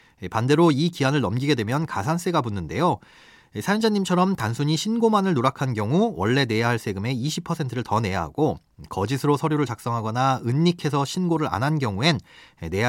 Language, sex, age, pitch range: Korean, male, 30-49, 115-170 Hz